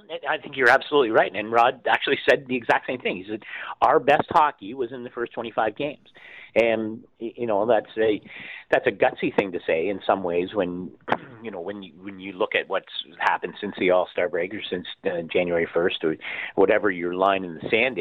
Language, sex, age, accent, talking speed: English, male, 50-69, American, 215 wpm